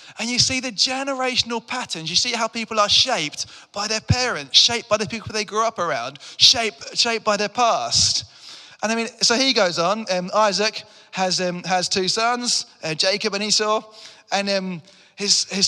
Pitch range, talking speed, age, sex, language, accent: 180-225 Hz, 190 wpm, 20-39, male, English, British